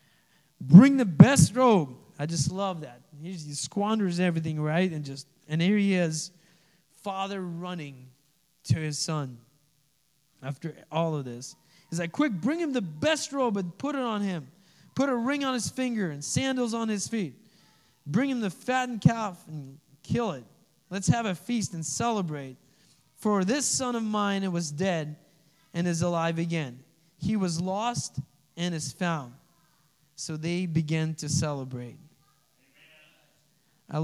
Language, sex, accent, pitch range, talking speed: English, male, American, 150-190 Hz, 155 wpm